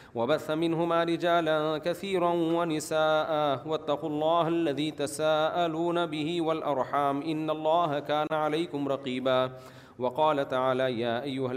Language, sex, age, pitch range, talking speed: Urdu, male, 40-59, 135-160 Hz, 100 wpm